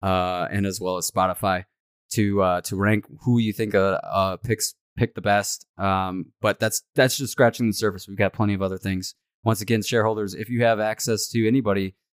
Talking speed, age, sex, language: 205 wpm, 20-39, male, English